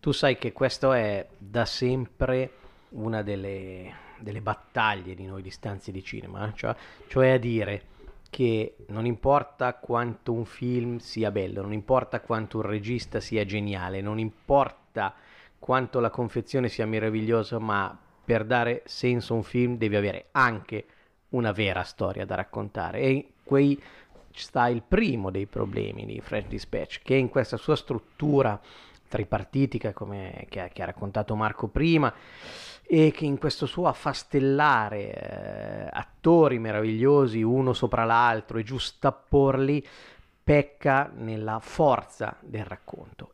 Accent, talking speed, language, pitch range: native, 140 wpm, Italian, 105-135 Hz